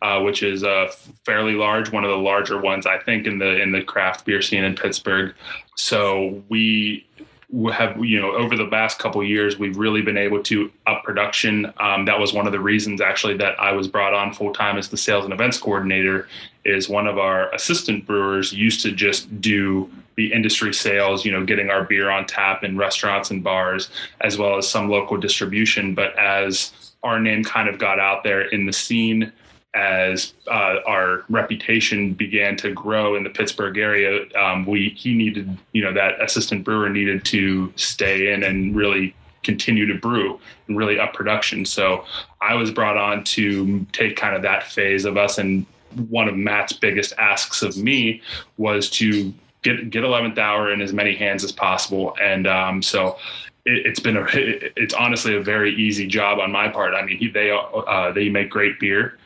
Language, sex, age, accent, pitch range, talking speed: English, male, 20-39, American, 100-105 Hz, 200 wpm